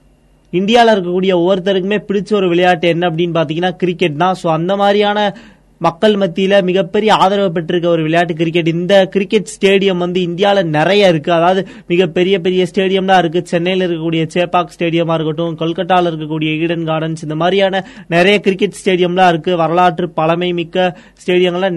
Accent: native